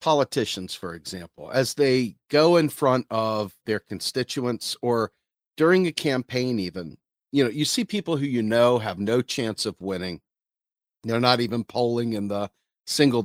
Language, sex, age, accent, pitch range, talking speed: English, male, 50-69, American, 110-145 Hz, 165 wpm